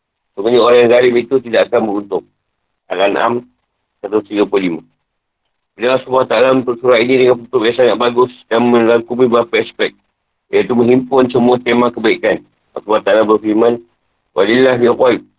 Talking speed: 120 wpm